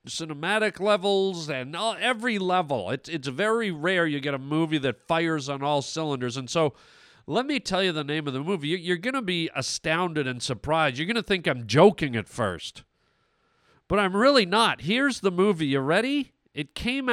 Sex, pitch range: male, 145-210 Hz